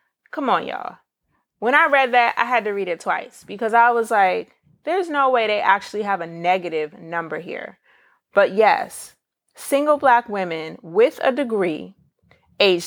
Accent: American